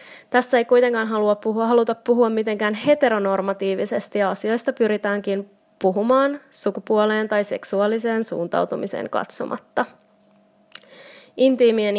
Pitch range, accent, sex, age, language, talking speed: 195-235 Hz, native, female, 20-39, Finnish, 95 wpm